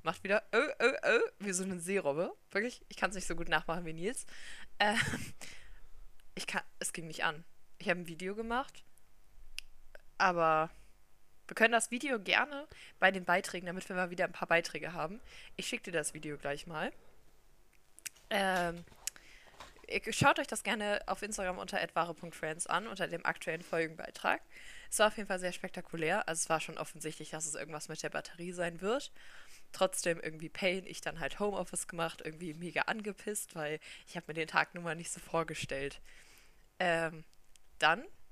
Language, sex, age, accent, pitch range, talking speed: German, female, 20-39, German, 160-205 Hz, 175 wpm